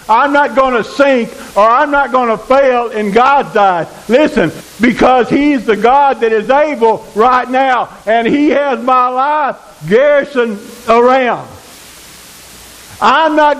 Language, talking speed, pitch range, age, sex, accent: English, 145 wpm, 215-280 Hz, 60-79, male, American